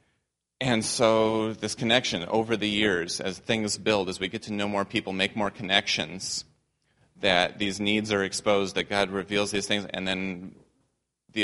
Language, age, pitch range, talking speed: English, 30-49, 95-105 Hz, 175 wpm